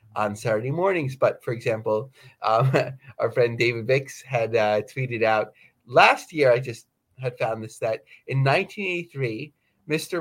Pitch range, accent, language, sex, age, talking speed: 115-145 Hz, American, English, male, 30-49, 155 wpm